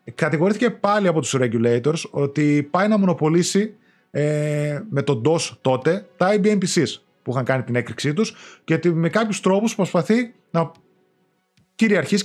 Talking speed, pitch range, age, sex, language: 150 wpm, 140-210 Hz, 30-49, male, Greek